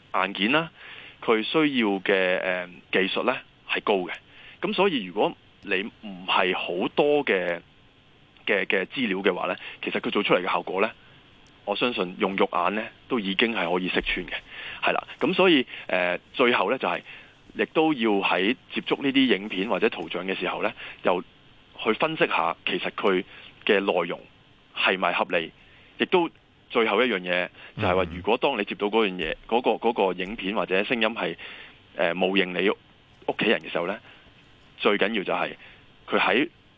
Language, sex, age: Chinese, male, 20-39